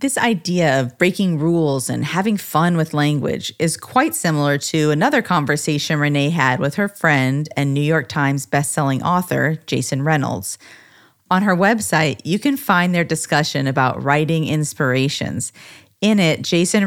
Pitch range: 140-180 Hz